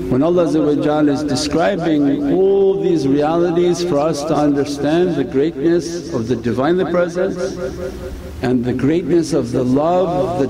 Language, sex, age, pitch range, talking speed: English, male, 60-79, 135-175 Hz, 135 wpm